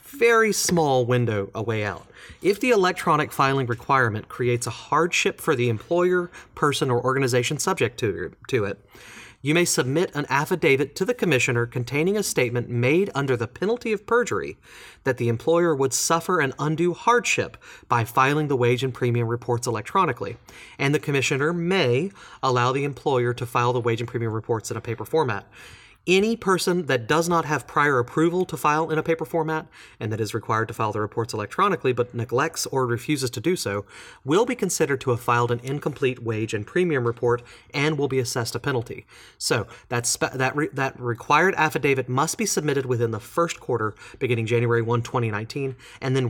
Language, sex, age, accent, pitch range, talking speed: English, male, 30-49, American, 120-155 Hz, 185 wpm